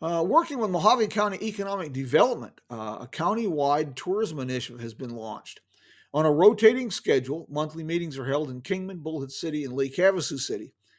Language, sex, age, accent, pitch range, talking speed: English, male, 50-69, American, 135-190 Hz, 170 wpm